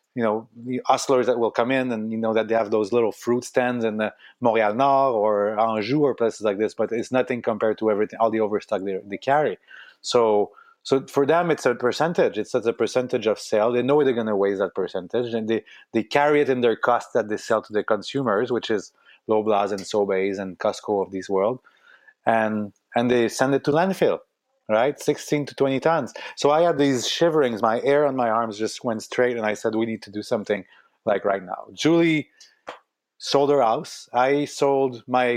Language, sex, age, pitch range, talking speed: English, male, 30-49, 110-140 Hz, 215 wpm